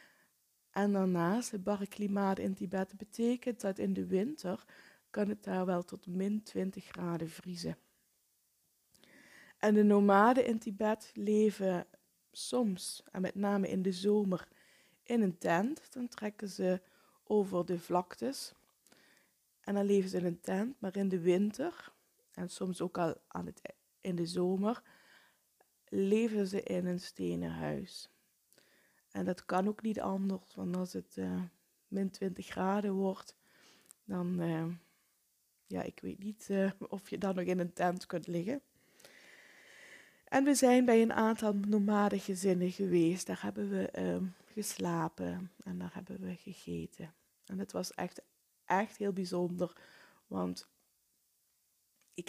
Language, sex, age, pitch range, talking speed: Dutch, female, 20-39, 180-210 Hz, 145 wpm